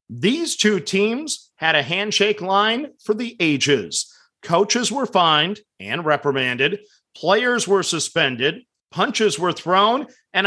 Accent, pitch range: American, 180-215 Hz